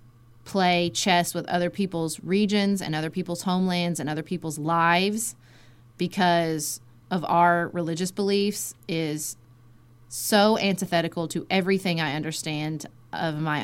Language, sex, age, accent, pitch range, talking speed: English, female, 30-49, American, 160-225 Hz, 125 wpm